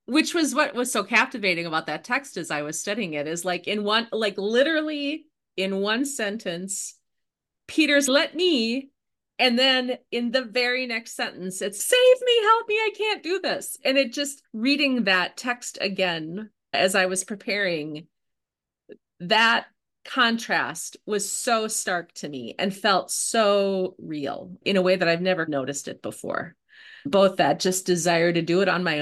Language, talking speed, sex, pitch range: English, 170 wpm, female, 170-245 Hz